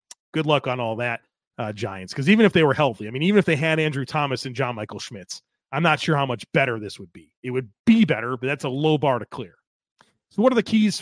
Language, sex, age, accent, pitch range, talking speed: English, male, 30-49, American, 140-190 Hz, 270 wpm